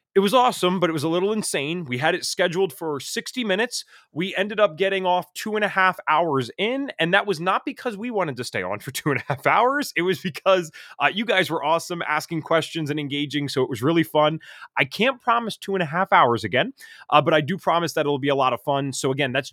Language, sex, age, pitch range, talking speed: English, male, 30-49, 130-175 Hz, 260 wpm